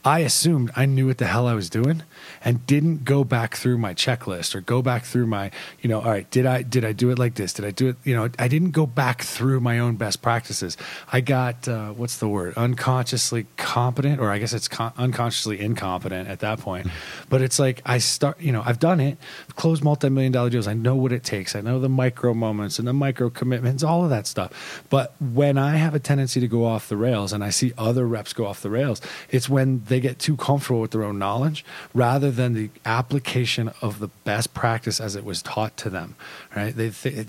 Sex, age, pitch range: male, 30-49, 110-135 Hz